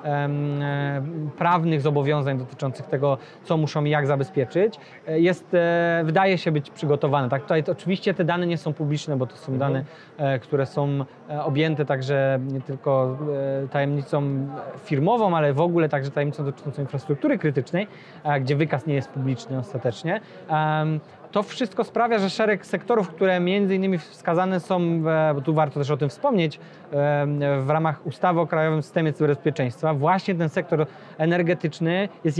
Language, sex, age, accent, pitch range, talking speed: Polish, male, 20-39, native, 145-175 Hz, 140 wpm